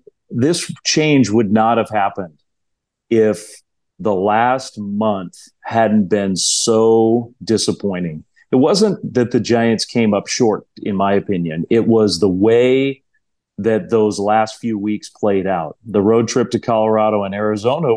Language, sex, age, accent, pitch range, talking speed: English, male, 40-59, American, 105-130 Hz, 145 wpm